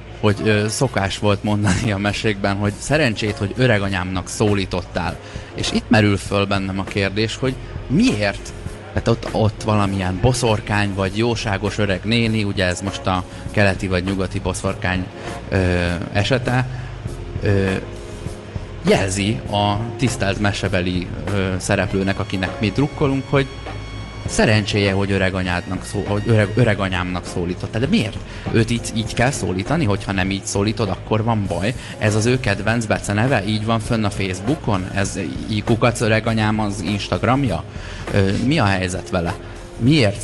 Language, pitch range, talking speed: Hungarian, 95-115 Hz, 135 wpm